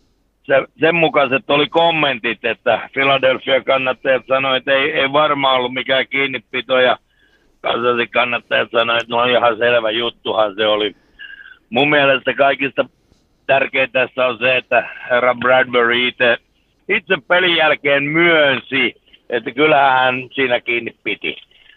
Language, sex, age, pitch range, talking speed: Finnish, male, 60-79, 125-160 Hz, 120 wpm